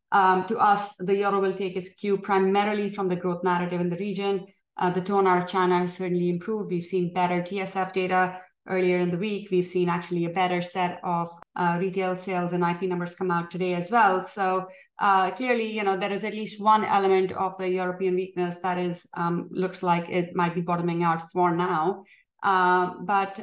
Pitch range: 170-190 Hz